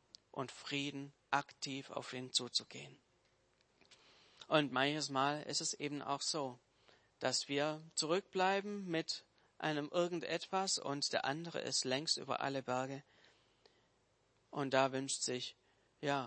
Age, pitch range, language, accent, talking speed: 40-59, 130-155 Hz, German, German, 120 wpm